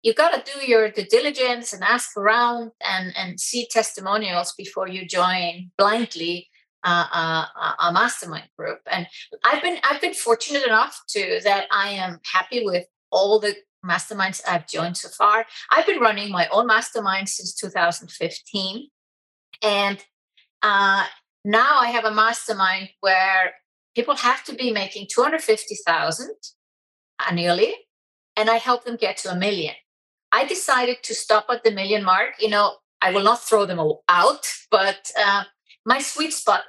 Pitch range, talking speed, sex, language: 190-245 Hz, 155 wpm, female, English